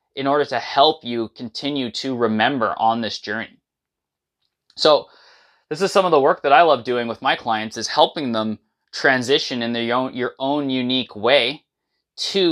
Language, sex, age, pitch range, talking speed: English, male, 20-39, 115-140 Hz, 175 wpm